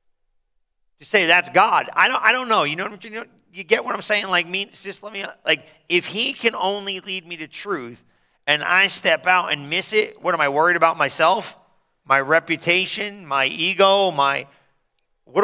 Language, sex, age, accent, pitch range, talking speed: English, male, 40-59, American, 175-215 Hz, 200 wpm